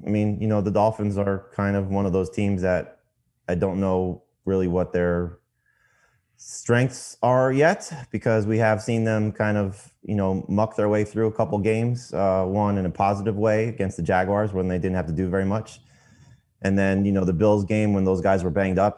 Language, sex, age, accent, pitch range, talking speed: English, male, 30-49, American, 90-110 Hz, 220 wpm